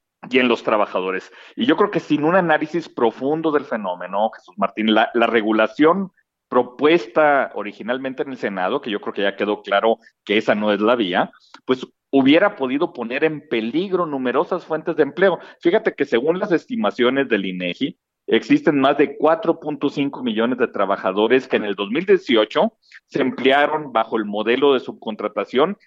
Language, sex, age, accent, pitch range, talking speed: Spanish, male, 40-59, Mexican, 110-155 Hz, 165 wpm